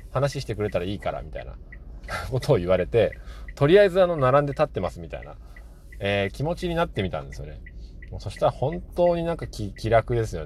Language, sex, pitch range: Japanese, male, 75-115 Hz